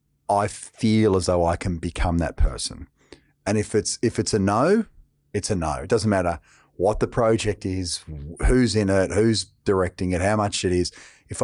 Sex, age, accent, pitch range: male, 40-59, Australian, 80-105 Hz